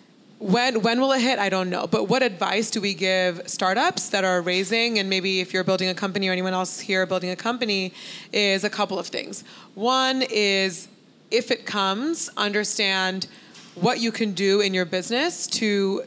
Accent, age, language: American, 20-39, English